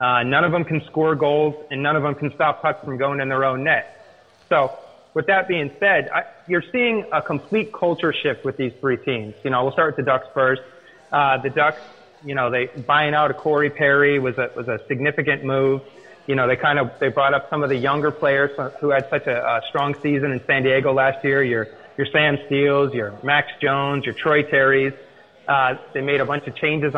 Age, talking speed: 30-49, 230 wpm